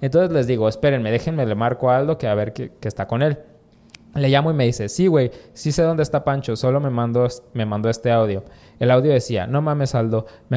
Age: 20-39